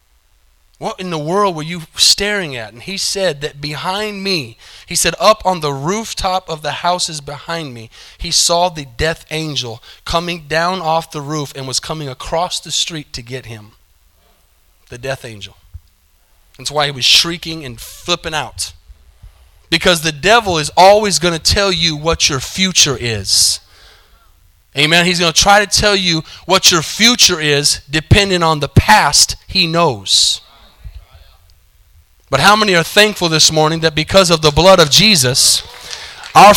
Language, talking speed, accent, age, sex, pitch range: English, 165 wpm, American, 30-49, male, 135-205 Hz